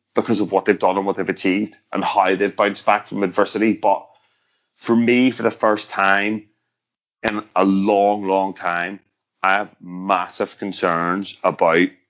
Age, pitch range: 30-49, 95-115 Hz